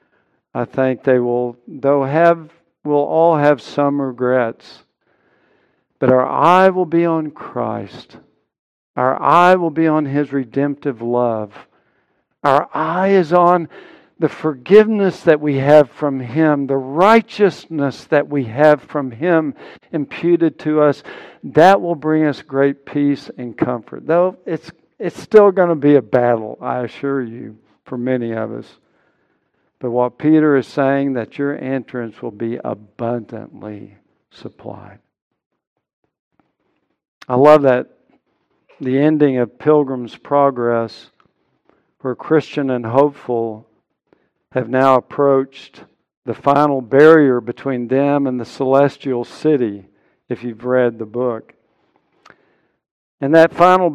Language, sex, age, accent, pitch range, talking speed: English, male, 60-79, American, 125-155 Hz, 130 wpm